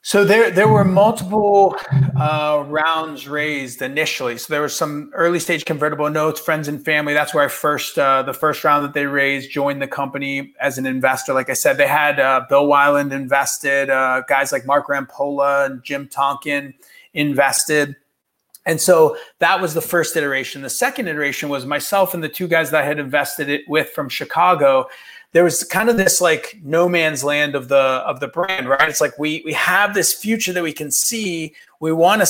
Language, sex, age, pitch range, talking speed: English, male, 30-49, 140-175 Hz, 200 wpm